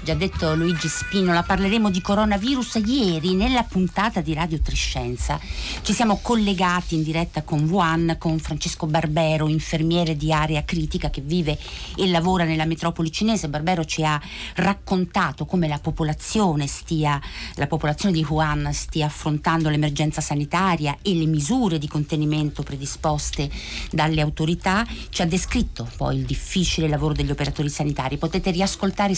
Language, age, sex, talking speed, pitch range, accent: Italian, 50-69, female, 145 wpm, 150-180 Hz, native